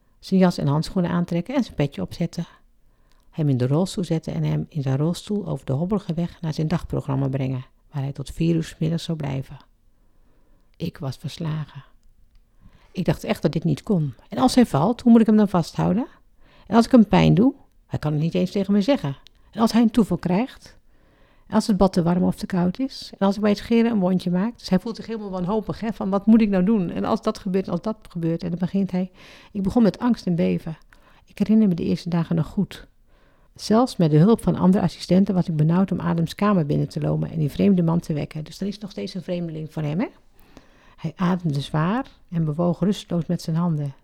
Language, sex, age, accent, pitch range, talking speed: Dutch, female, 60-79, Dutch, 160-205 Hz, 235 wpm